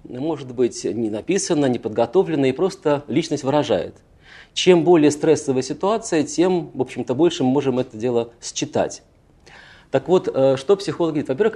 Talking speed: 150 wpm